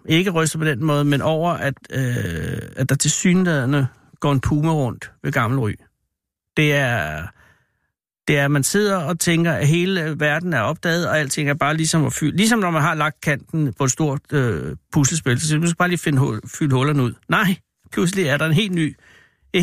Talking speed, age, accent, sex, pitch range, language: 215 wpm, 60-79, native, male, 140-180 Hz, Danish